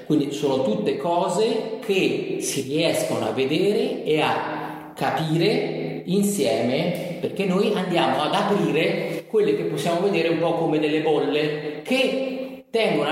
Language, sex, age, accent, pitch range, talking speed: Italian, male, 30-49, native, 155-250 Hz, 135 wpm